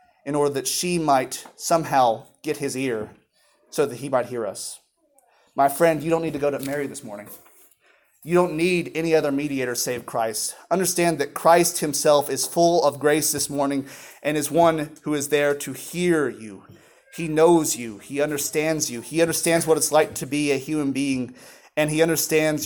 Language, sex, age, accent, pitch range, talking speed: English, male, 30-49, American, 135-175 Hz, 190 wpm